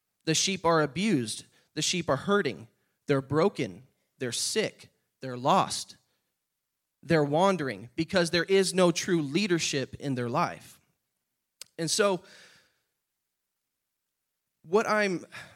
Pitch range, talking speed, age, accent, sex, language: 140-195 Hz, 110 wpm, 20-39, American, male, English